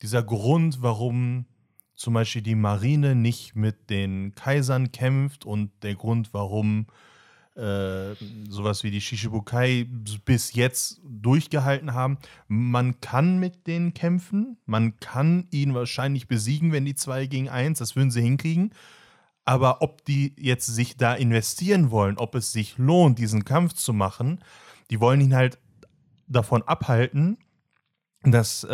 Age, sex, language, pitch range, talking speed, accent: 30-49, male, German, 110-135 Hz, 140 wpm, German